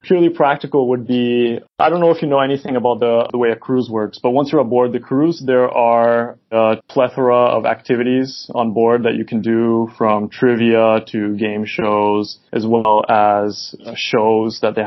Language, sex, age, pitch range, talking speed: English, male, 20-39, 110-130 Hz, 190 wpm